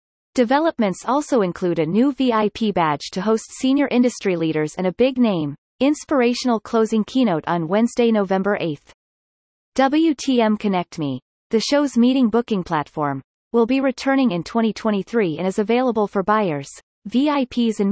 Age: 30-49